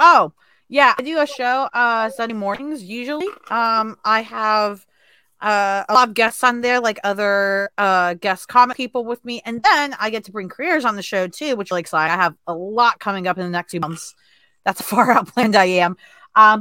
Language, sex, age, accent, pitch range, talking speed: English, female, 30-49, American, 175-240 Hz, 225 wpm